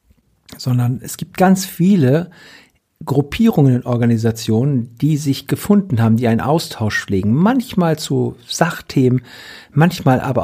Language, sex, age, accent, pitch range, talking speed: German, male, 50-69, German, 115-150 Hz, 120 wpm